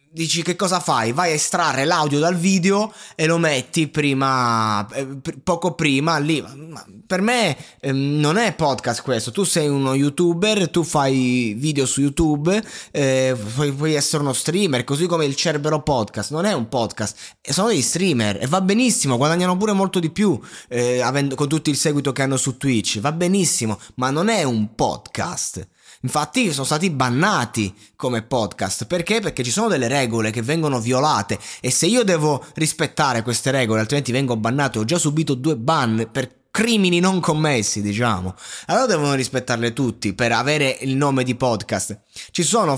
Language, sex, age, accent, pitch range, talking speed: Italian, male, 20-39, native, 125-165 Hz, 170 wpm